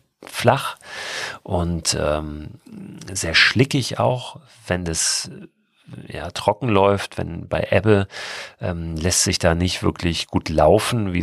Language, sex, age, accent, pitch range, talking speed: German, male, 40-59, German, 80-105 Hz, 120 wpm